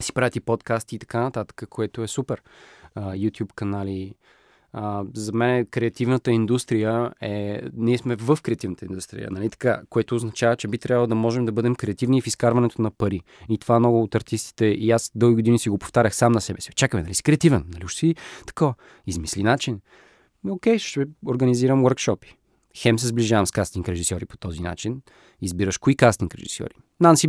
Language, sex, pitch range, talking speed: Bulgarian, male, 105-130 Hz, 190 wpm